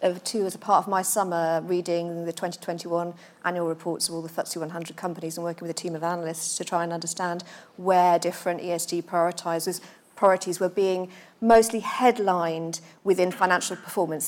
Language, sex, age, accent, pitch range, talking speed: English, female, 40-59, British, 170-205 Hz, 170 wpm